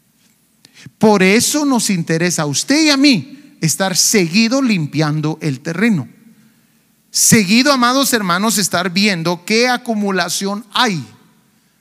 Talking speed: 110 wpm